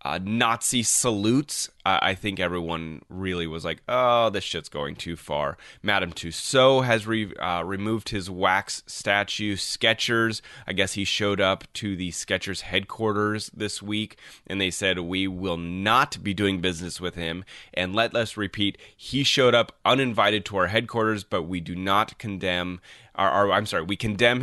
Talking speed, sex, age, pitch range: 165 wpm, male, 30-49, 90-115 Hz